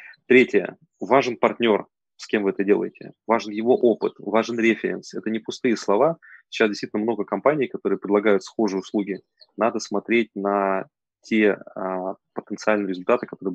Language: Russian